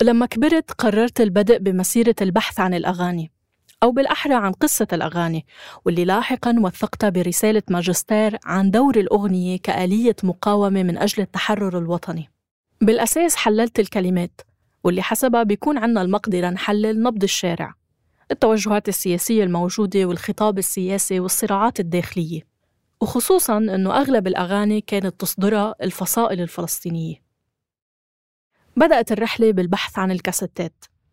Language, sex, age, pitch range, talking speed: Arabic, female, 20-39, 180-220 Hz, 110 wpm